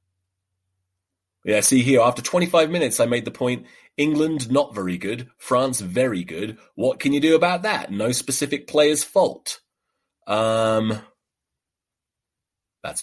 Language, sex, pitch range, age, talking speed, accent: English, male, 95-150 Hz, 30-49, 135 wpm, British